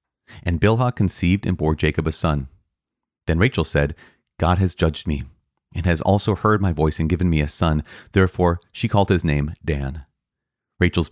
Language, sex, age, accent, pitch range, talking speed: English, male, 30-49, American, 75-100 Hz, 180 wpm